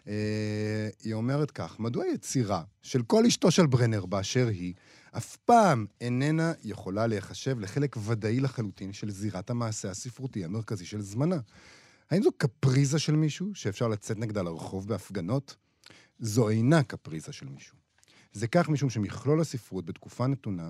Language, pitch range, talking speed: Hebrew, 105-145 Hz, 140 wpm